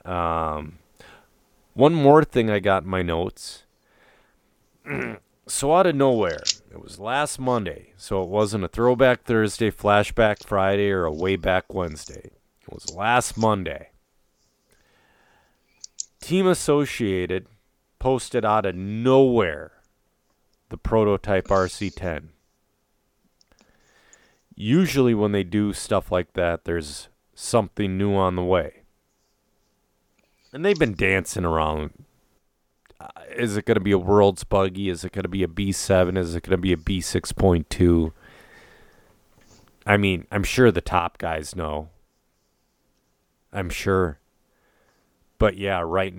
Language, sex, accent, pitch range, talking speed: English, male, American, 90-115 Hz, 125 wpm